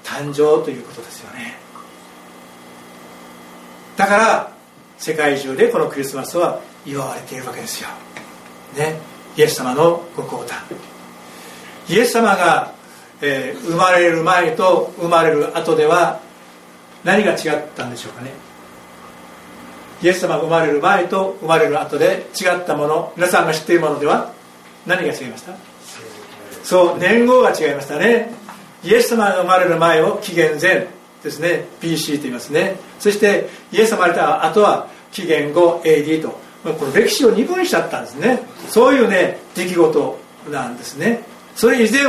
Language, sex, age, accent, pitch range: Japanese, male, 60-79, native, 135-205 Hz